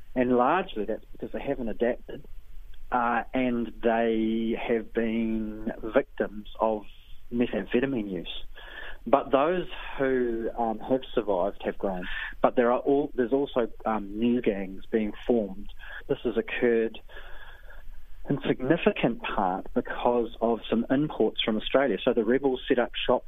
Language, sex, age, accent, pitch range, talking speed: English, male, 30-49, Australian, 105-125 Hz, 135 wpm